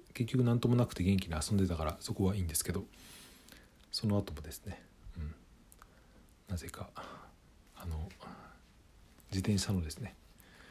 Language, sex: Japanese, male